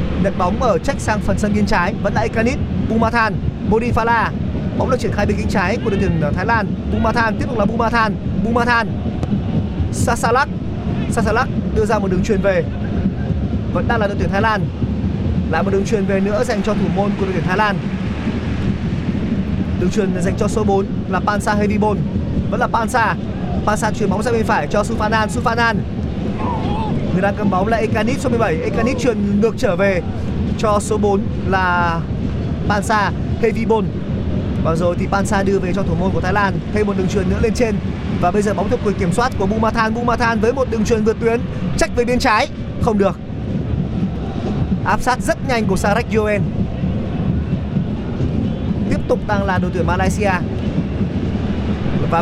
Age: 20-39